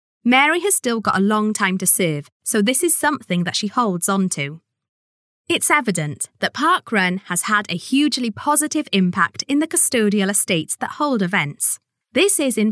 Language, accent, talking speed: English, British, 180 wpm